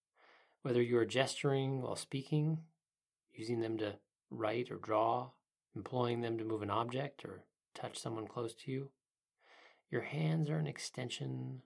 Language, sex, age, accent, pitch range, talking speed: English, male, 30-49, American, 110-140 Hz, 150 wpm